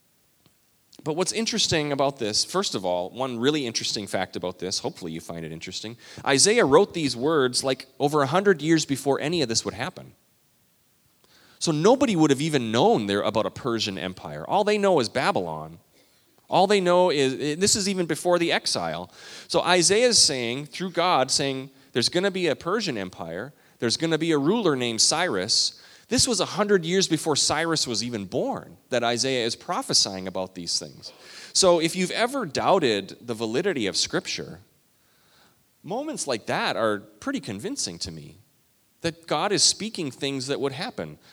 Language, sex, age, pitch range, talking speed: English, male, 30-49, 110-175 Hz, 180 wpm